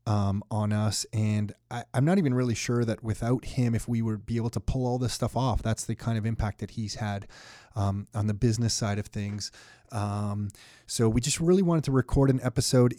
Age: 30-49